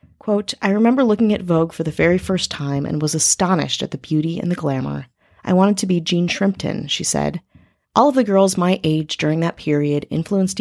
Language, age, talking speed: English, 30-49, 210 wpm